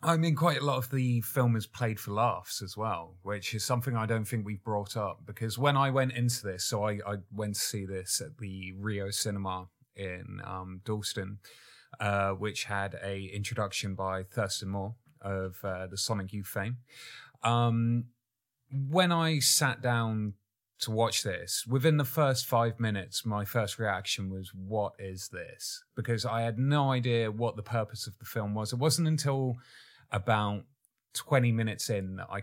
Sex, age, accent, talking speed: male, 30-49, British, 180 wpm